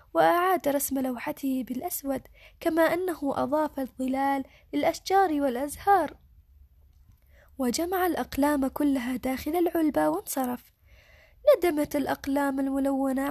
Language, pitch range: Arabic, 260-325 Hz